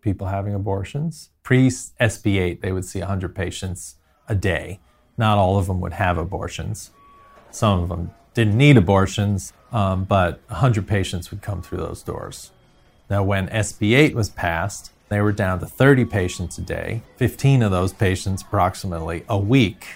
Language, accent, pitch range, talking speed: English, American, 90-105 Hz, 160 wpm